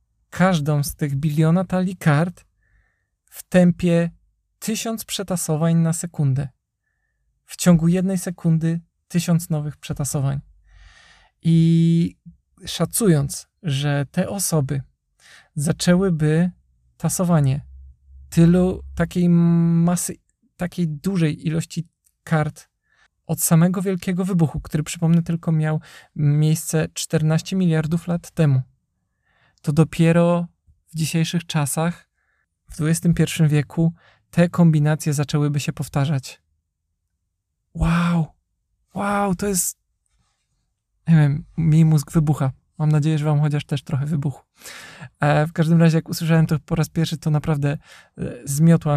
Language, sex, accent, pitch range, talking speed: Polish, male, native, 145-170 Hz, 110 wpm